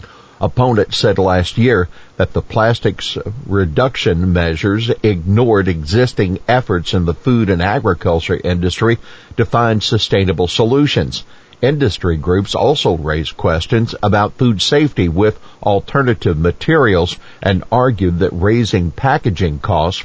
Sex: male